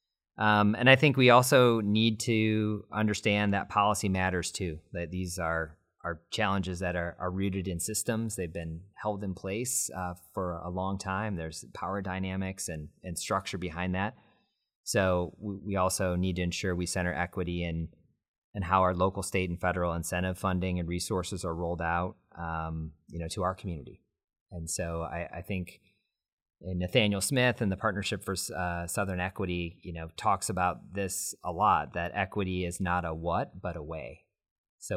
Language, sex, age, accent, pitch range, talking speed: English, male, 30-49, American, 85-100 Hz, 180 wpm